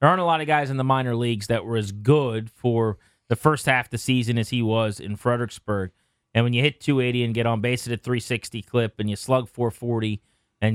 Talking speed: 245 wpm